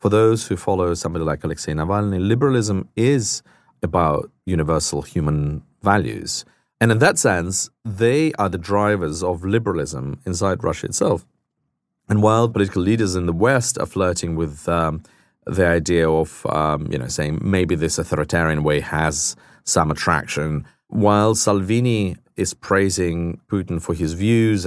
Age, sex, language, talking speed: 40-59, male, English, 145 wpm